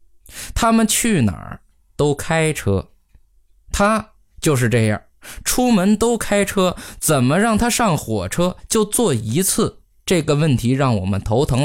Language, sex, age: Chinese, male, 20-39